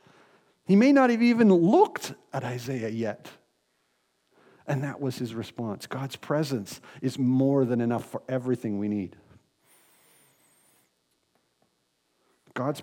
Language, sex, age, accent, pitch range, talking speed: English, male, 50-69, American, 125-165 Hz, 115 wpm